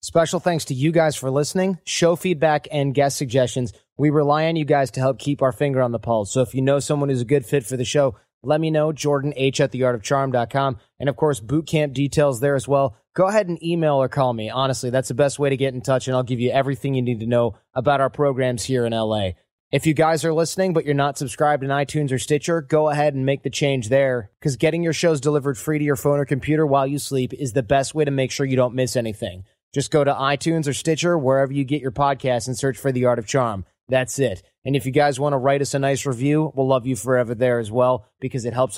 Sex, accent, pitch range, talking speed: male, American, 125-150 Hz, 260 wpm